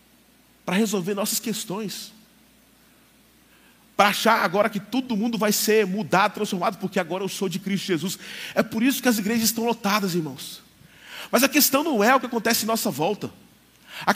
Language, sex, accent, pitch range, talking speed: Portuguese, male, Brazilian, 210-260 Hz, 180 wpm